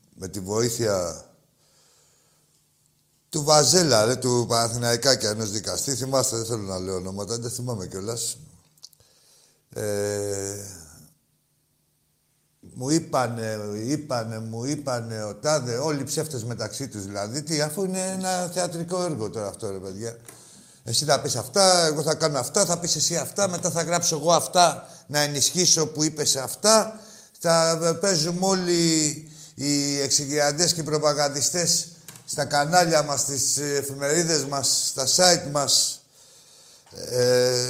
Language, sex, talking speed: Greek, male, 130 wpm